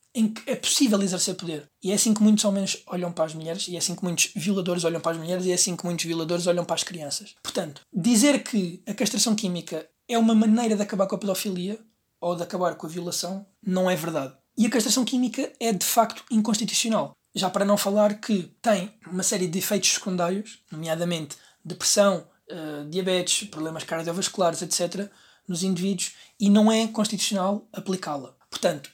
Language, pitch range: Portuguese, 175-205 Hz